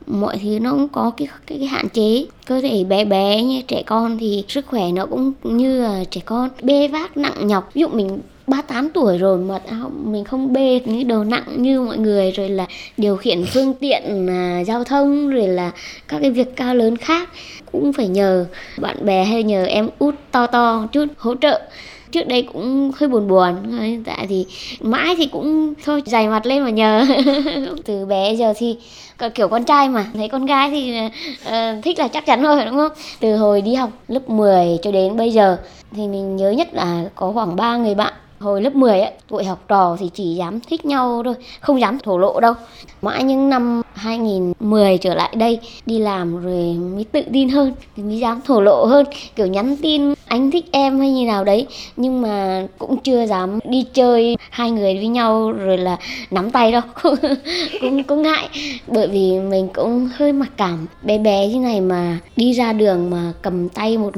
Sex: male